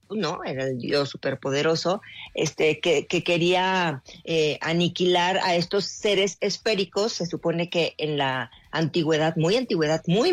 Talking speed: 130 wpm